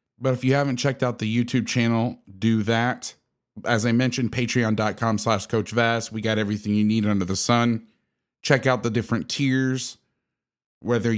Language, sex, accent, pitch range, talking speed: English, male, American, 110-130 Hz, 165 wpm